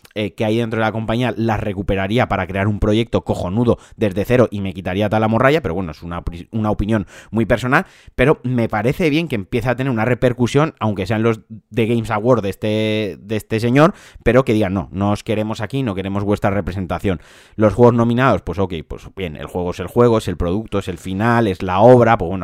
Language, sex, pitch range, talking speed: Spanish, male, 95-115 Hz, 225 wpm